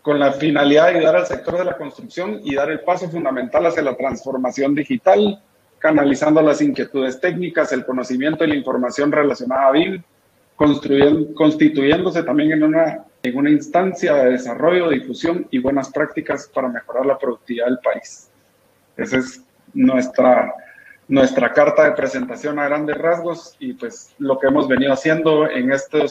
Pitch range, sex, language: 135-165 Hz, male, Spanish